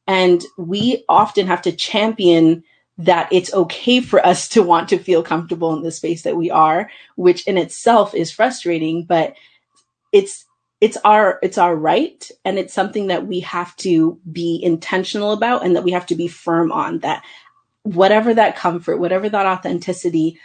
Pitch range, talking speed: 170-205 Hz, 175 wpm